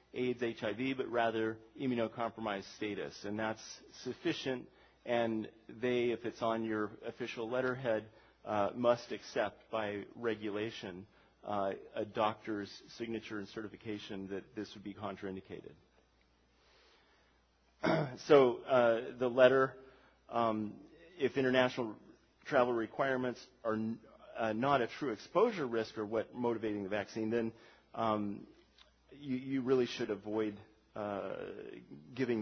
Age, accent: 40-59, American